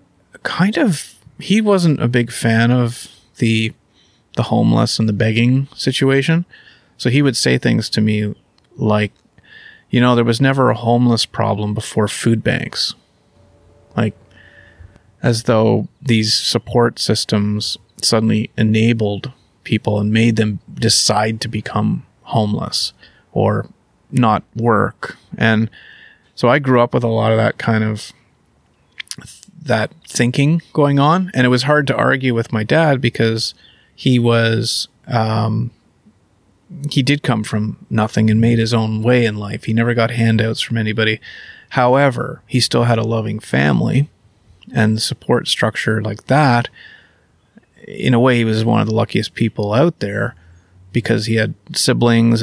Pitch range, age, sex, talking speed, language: 110-125 Hz, 30-49, male, 145 wpm, English